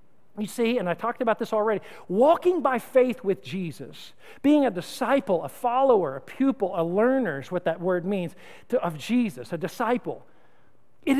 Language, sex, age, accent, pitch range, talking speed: English, male, 50-69, American, 180-250 Hz, 175 wpm